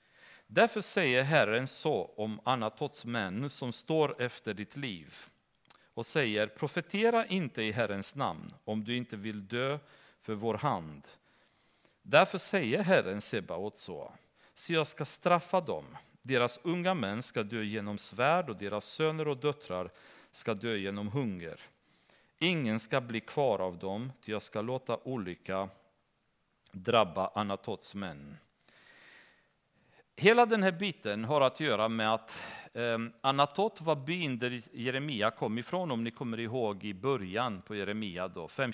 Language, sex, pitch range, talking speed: Swedish, male, 110-150 Hz, 145 wpm